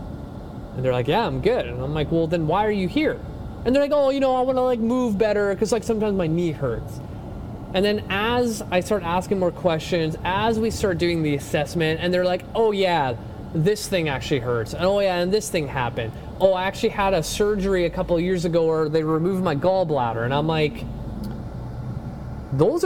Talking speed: 220 wpm